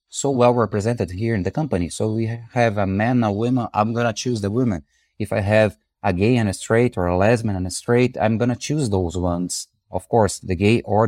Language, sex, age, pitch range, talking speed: English, male, 30-49, 90-120 Hz, 245 wpm